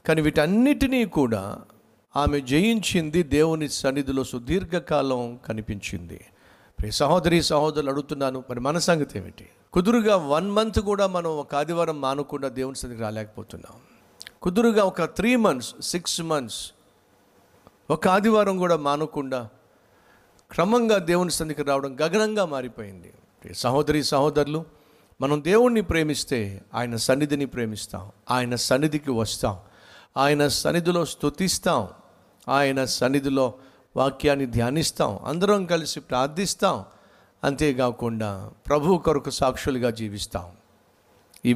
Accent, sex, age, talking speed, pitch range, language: native, male, 50-69, 100 wpm, 120-160 Hz, Telugu